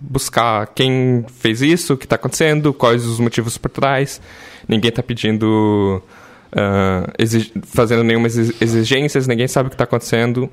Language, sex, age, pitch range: Portuguese, male, 10-29, 105-130 Hz